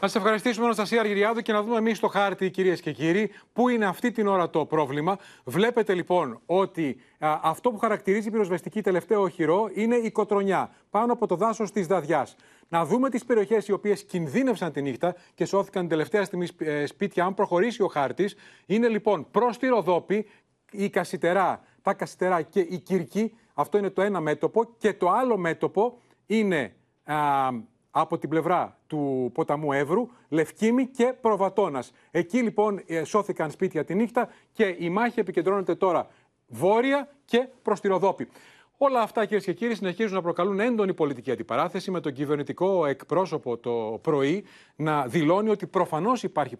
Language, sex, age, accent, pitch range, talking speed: Greek, male, 30-49, native, 165-215 Hz, 180 wpm